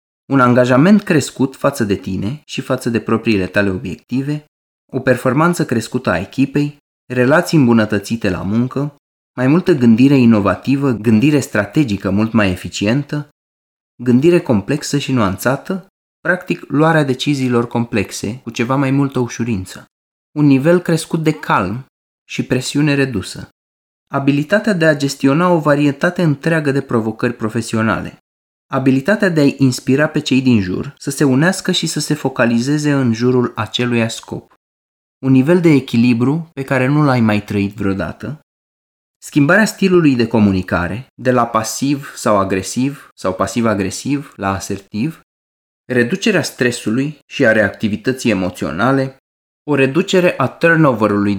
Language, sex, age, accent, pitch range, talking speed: Romanian, male, 20-39, native, 110-145 Hz, 135 wpm